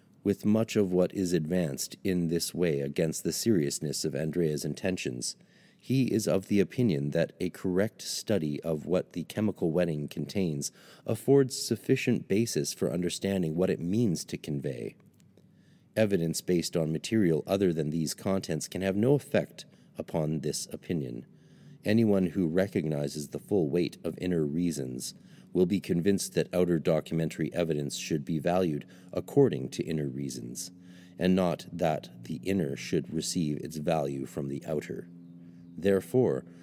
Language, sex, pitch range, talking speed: English, male, 80-95 Hz, 150 wpm